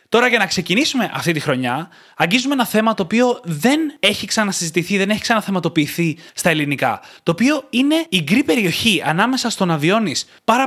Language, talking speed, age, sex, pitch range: Greek, 175 wpm, 20-39, male, 155-215 Hz